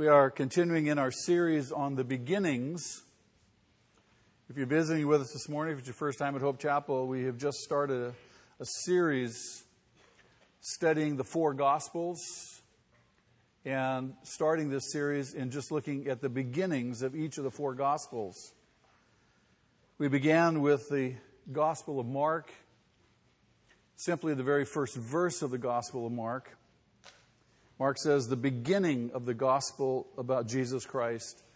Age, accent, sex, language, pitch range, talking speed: 50-69, American, male, English, 125-150 Hz, 150 wpm